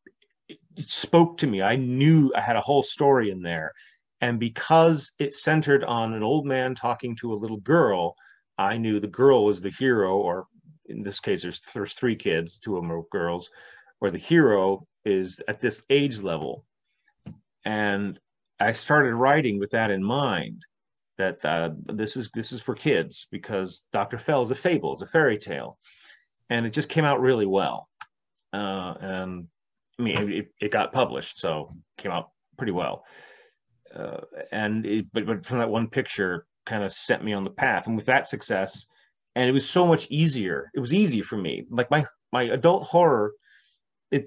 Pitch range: 100-140 Hz